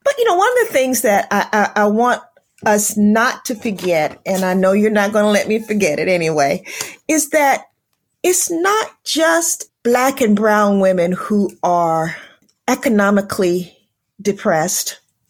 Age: 40-59